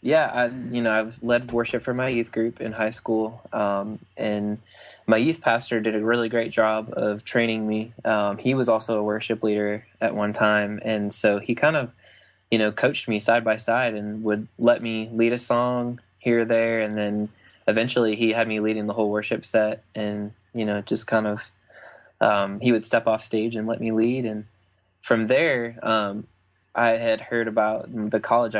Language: English